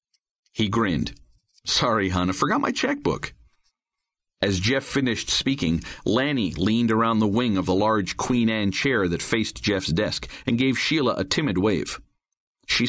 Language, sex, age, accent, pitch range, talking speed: English, male, 50-69, American, 95-135 Hz, 160 wpm